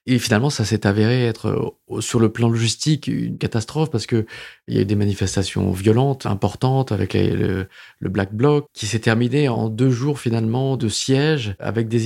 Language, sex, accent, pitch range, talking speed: French, male, French, 110-135 Hz, 195 wpm